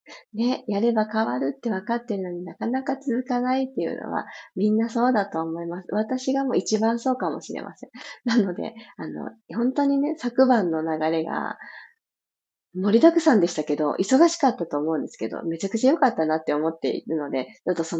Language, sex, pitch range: Japanese, female, 175-255 Hz